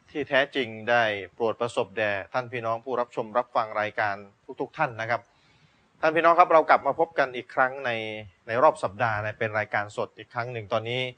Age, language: 20-39, Thai